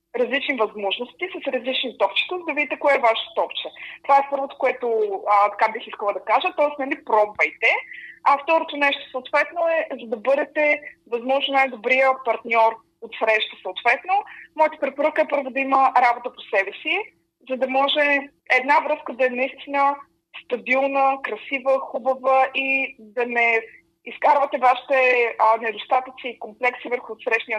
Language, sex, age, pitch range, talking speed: Bulgarian, female, 20-39, 230-285 Hz, 150 wpm